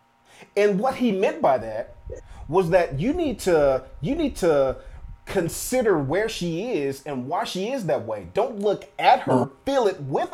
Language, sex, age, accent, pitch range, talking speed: English, male, 30-49, American, 155-215 Hz, 180 wpm